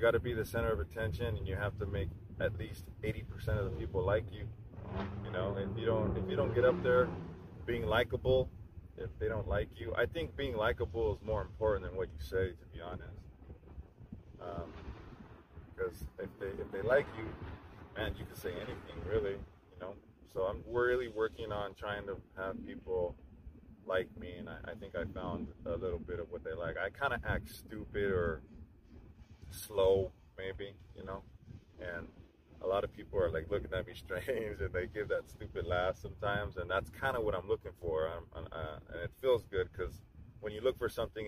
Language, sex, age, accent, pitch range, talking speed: English, male, 20-39, American, 95-130 Hz, 205 wpm